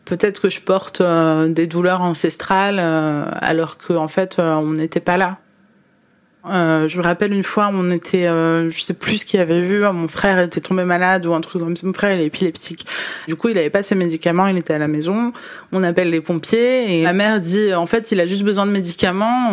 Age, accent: 20-39, French